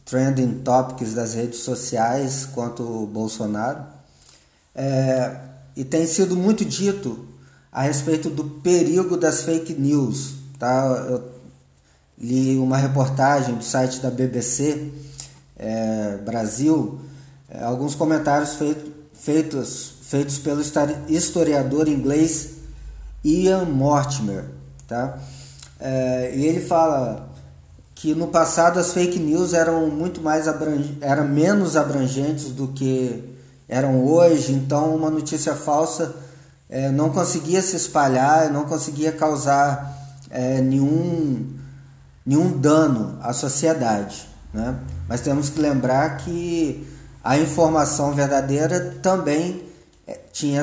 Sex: male